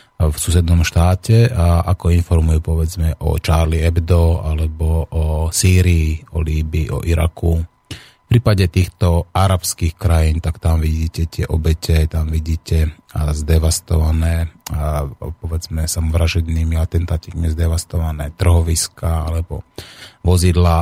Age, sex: 30-49, male